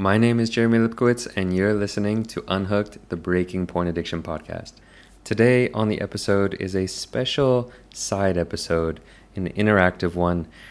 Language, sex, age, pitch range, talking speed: English, male, 20-39, 85-100 Hz, 150 wpm